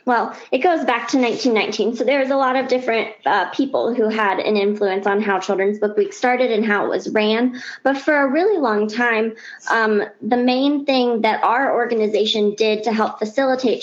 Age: 20-39